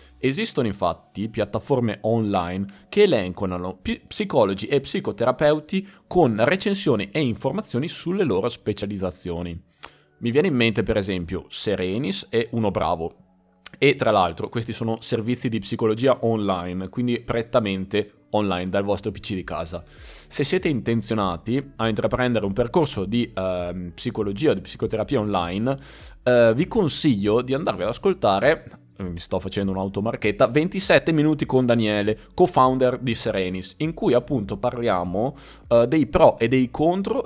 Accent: native